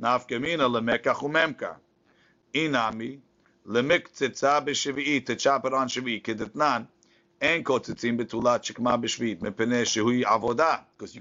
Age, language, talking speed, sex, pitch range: 50-69, English, 55 wpm, male, 120-130 Hz